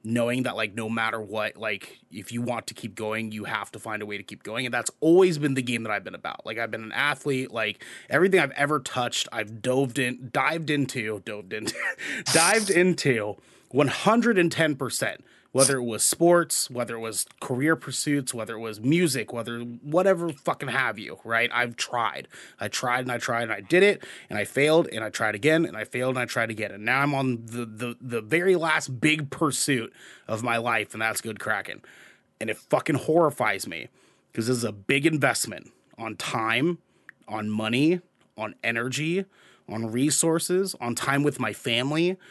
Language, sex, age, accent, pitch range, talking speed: English, male, 30-49, American, 115-155 Hz, 195 wpm